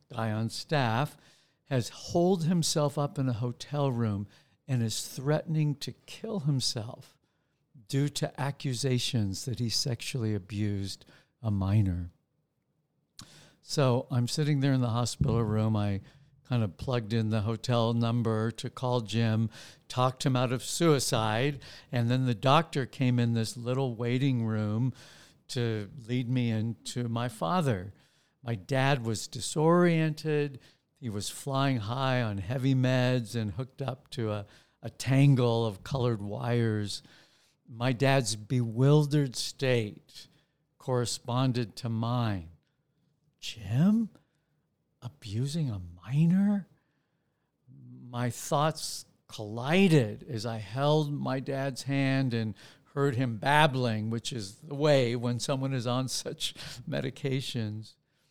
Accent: American